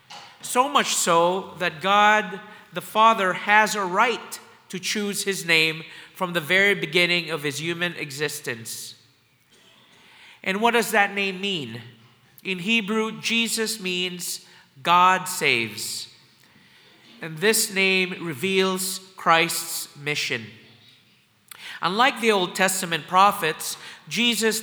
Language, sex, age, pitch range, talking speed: English, male, 40-59, 150-205 Hz, 110 wpm